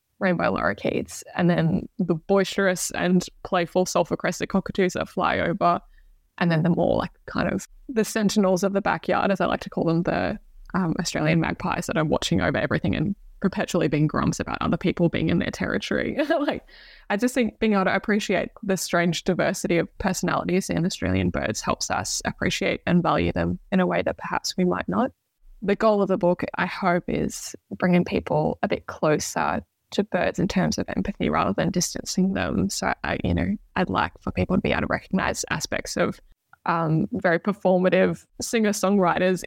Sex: female